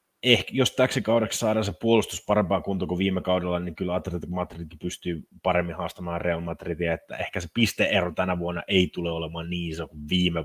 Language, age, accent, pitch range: Finnish, 30-49, native, 85-105 Hz